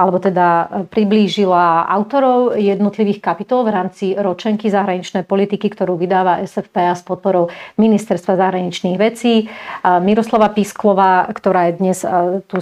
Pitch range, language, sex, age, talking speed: 180-205 Hz, Slovak, female, 30-49, 120 wpm